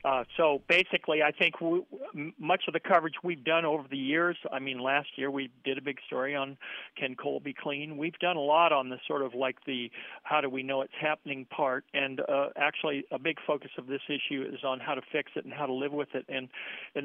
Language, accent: English, American